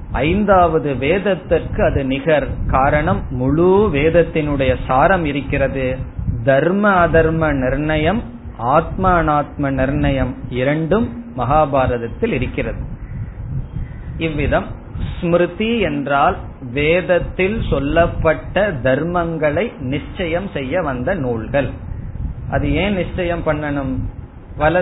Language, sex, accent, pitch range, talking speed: Tamil, male, native, 130-170 Hz, 75 wpm